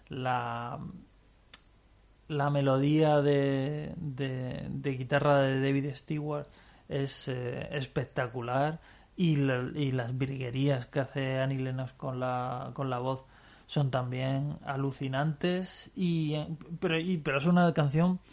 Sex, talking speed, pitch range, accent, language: male, 120 wpm, 125-145 Hz, Spanish, Spanish